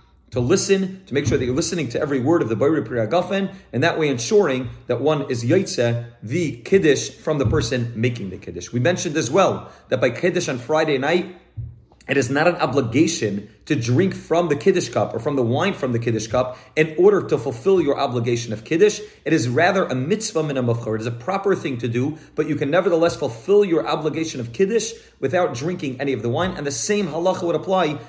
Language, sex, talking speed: English, male, 215 wpm